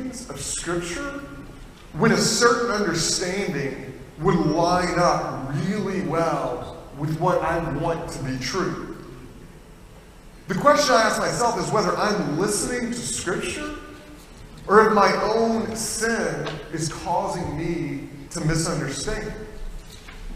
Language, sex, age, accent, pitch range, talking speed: English, male, 30-49, American, 155-210 Hz, 115 wpm